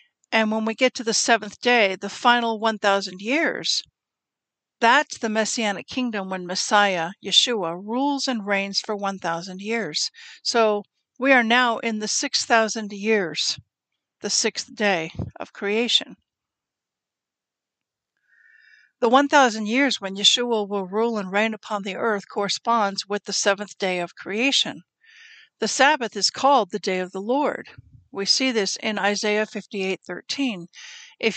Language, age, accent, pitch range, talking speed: English, 60-79, American, 200-255 Hz, 140 wpm